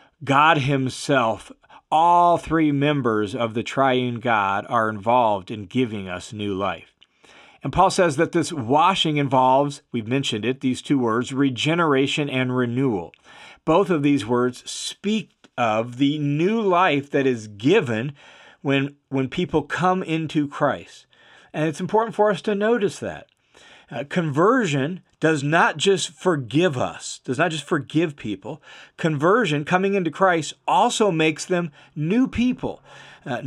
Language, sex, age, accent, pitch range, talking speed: English, male, 40-59, American, 130-175 Hz, 145 wpm